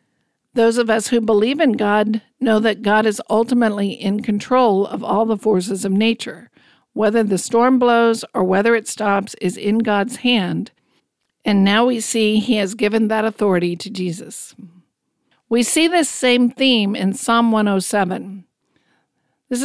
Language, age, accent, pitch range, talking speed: English, 50-69, American, 200-235 Hz, 160 wpm